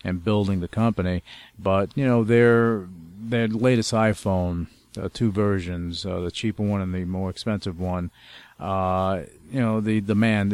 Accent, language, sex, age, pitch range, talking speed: American, English, male, 40-59, 95-110 Hz, 160 wpm